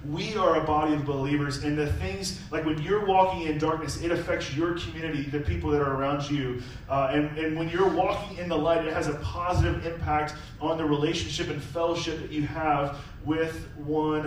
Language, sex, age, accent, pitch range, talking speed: English, male, 30-49, American, 135-155 Hz, 205 wpm